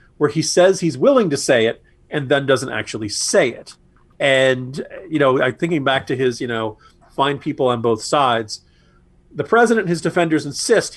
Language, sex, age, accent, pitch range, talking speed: English, male, 40-59, American, 115-180 Hz, 185 wpm